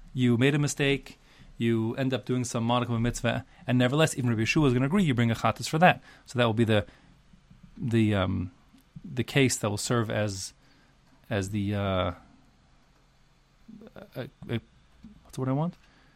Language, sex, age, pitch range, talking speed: English, male, 30-49, 110-140 Hz, 190 wpm